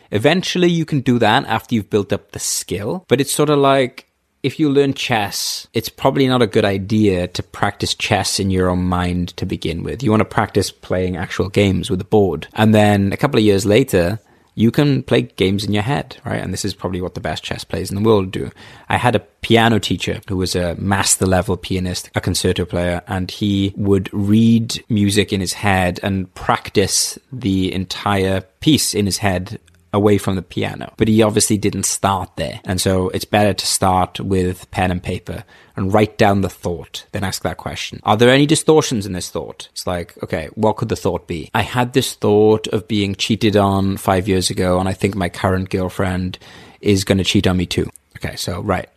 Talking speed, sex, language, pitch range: 215 wpm, male, English, 95-110 Hz